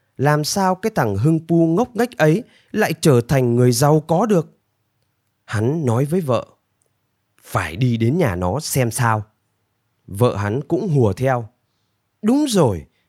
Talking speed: 155 wpm